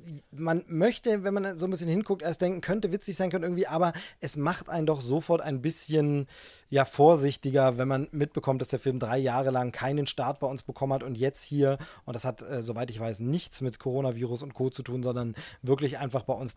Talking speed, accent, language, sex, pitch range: 225 wpm, German, German, male, 130-165 Hz